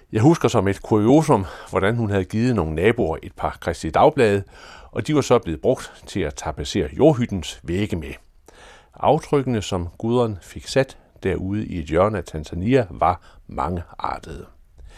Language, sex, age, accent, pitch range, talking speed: Danish, male, 60-79, native, 85-130 Hz, 160 wpm